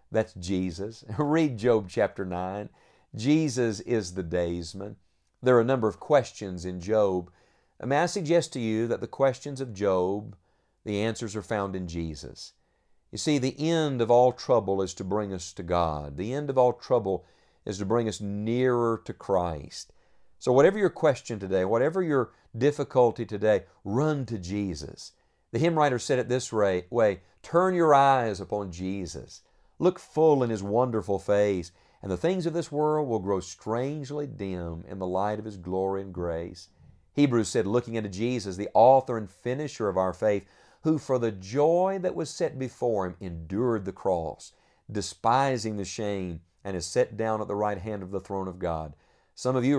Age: 50-69